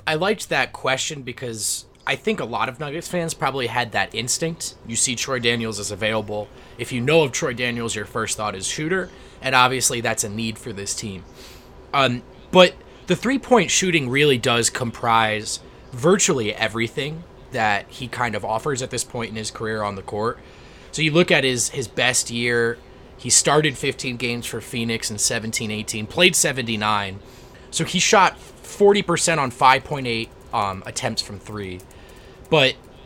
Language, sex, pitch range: English, male, 110-155 Hz